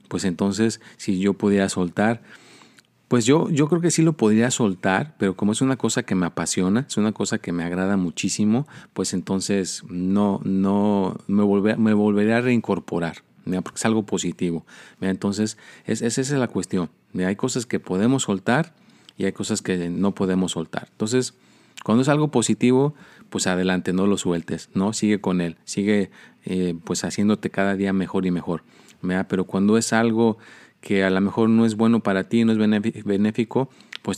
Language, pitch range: Spanish, 95-110 Hz